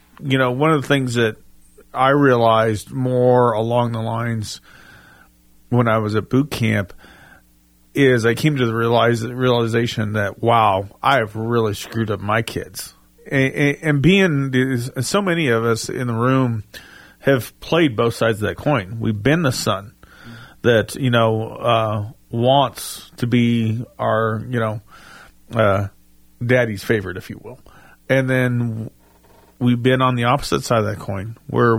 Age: 40-59